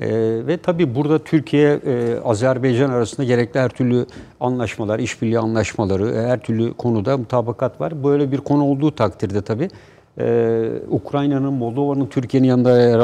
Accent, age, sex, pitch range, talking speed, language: native, 60-79, male, 110-135 Hz, 145 wpm, Turkish